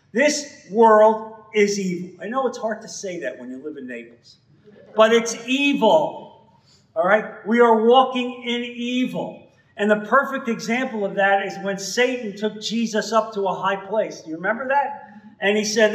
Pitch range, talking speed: 195-255 Hz, 185 wpm